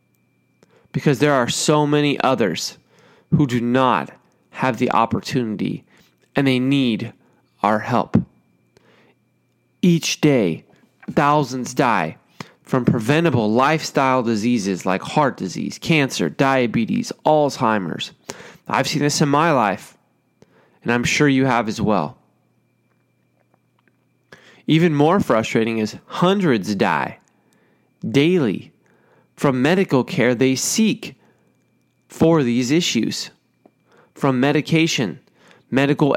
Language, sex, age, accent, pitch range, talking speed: English, male, 30-49, American, 120-150 Hz, 105 wpm